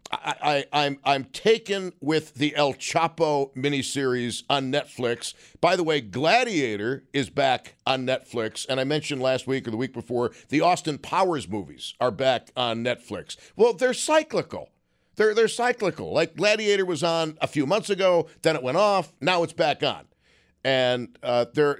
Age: 50-69